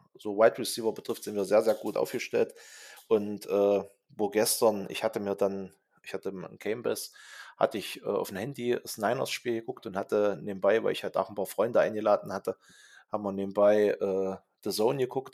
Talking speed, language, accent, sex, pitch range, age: 200 wpm, German, German, male, 95-110 Hz, 20-39